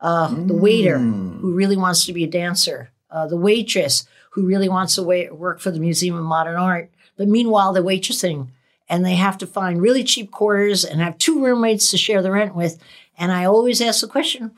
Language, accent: English, American